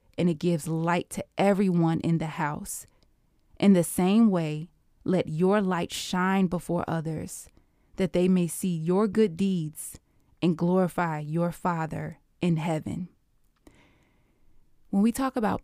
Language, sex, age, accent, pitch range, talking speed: English, female, 20-39, American, 160-200 Hz, 140 wpm